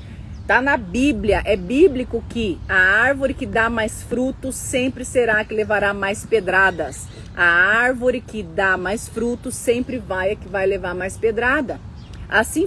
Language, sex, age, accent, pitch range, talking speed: Portuguese, female, 30-49, Brazilian, 210-275 Hz, 160 wpm